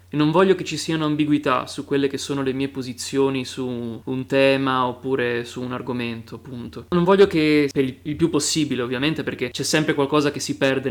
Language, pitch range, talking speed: Italian, 125-145 Hz, 205 wpm